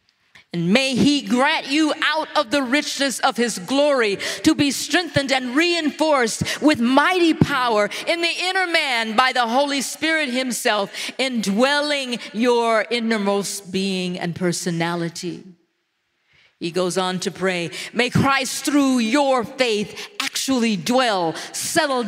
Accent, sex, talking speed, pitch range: American, female, 130 wpm, 210-290 Hz